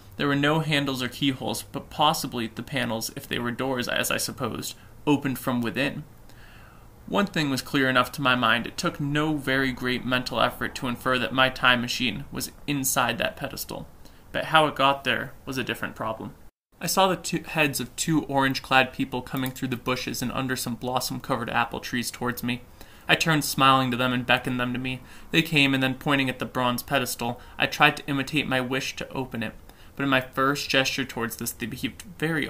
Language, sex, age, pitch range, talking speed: English, male, 20-39, 120-145 Hz, 205 wpm